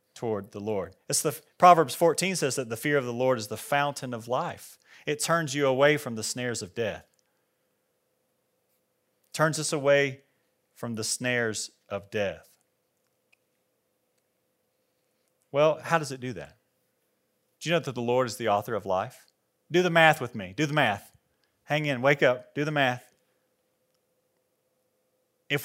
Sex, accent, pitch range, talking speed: male, American, 130-180 Hz, 165 wpm